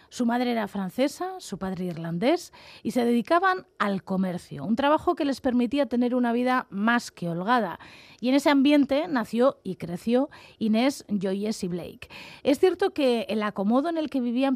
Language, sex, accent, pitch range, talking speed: Spanish, female, Spanish, 195-260 Hz, 175 wpm